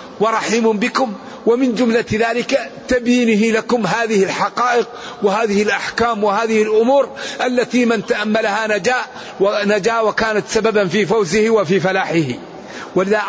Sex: male